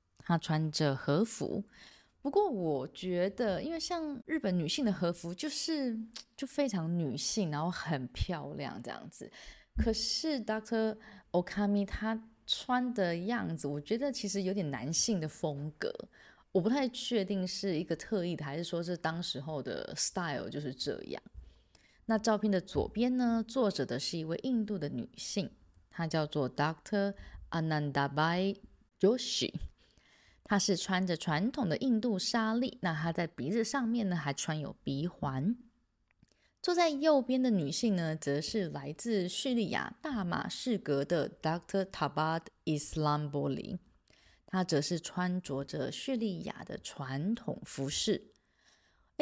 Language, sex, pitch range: Chinese, female, 160-225 Hz